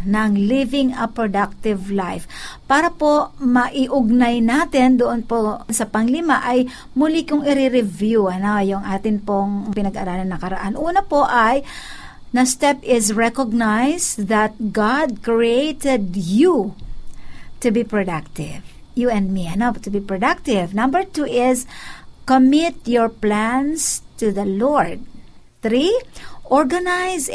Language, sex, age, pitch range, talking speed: Filipino, female, 50-69, 210-280 Hz, 125 wpm